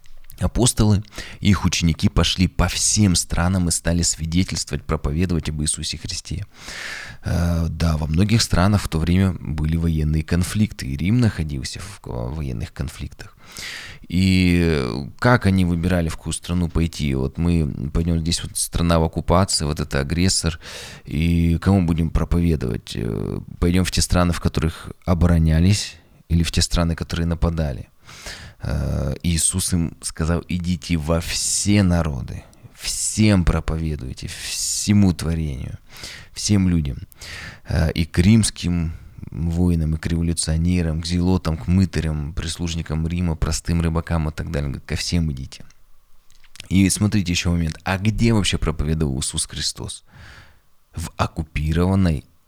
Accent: native